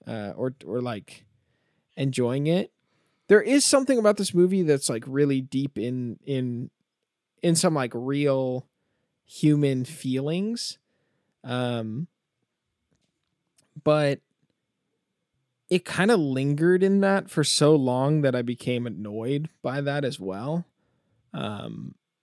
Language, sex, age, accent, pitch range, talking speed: English, male, 20-39, American, 125-160 Hz, 120 wpm